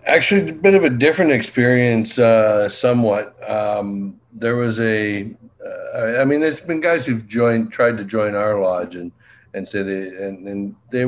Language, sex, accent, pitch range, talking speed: English, male, American, 95-120 Hz, 180 wpm